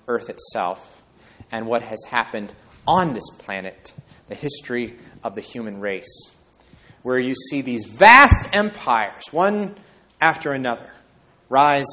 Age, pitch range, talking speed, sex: 30-49, 110-140 Hz, 125 wpm, male